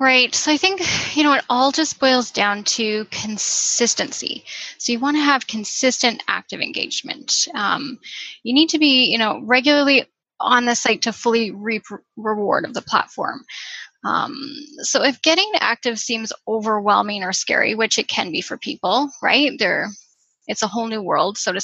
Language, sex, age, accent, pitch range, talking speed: English, female, 10-29, American, 220-275 Hz, 175 wpm